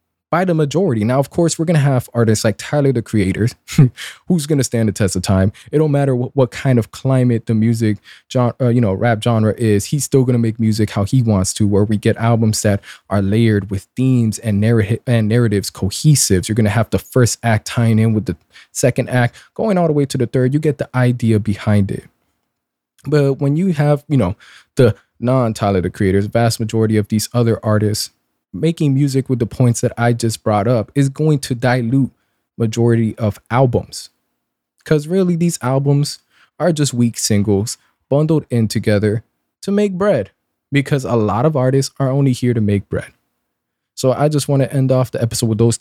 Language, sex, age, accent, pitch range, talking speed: English, male, 20-39, American, 105-135 Hz, 210 wpm